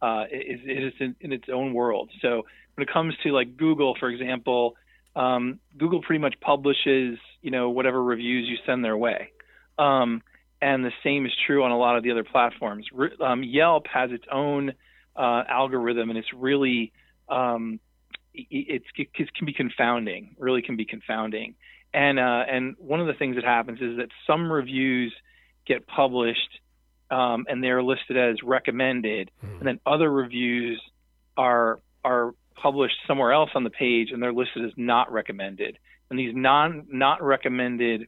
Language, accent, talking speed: English, American, 175 wpm